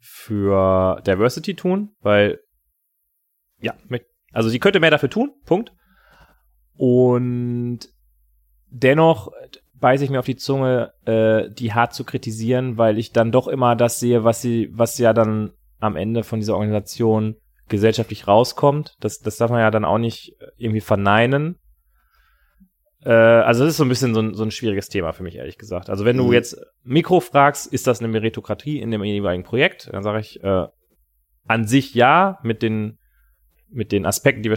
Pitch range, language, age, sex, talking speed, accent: 105-125 Hz, German, 30-49, male, 165 wpm, German